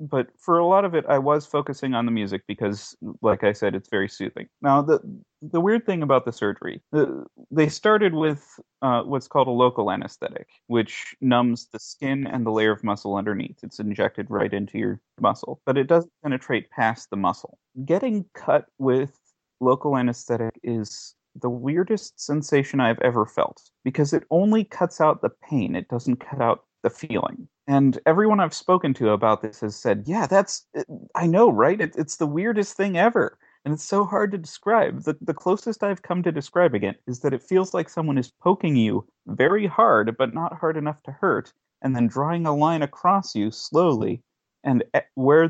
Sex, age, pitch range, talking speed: male, 30-49, 120-170 Hz, 195 wpm